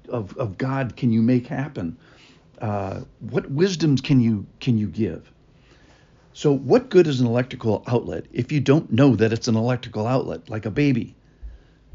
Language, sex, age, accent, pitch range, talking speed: English, male, 60-79, American, 115-145 Hz, 170 wpm